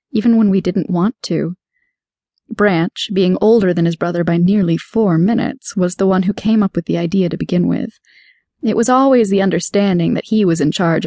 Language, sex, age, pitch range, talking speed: English, female, 20-39, 175-225 Hz, 205 wpm